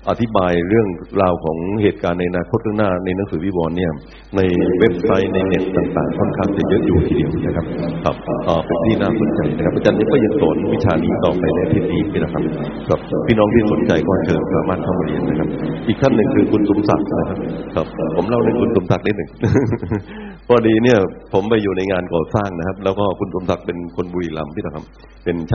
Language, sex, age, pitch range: Thai, male, 60-79, 85-105 Hz